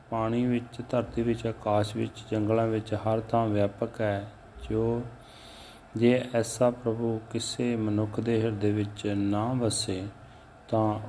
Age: 30-49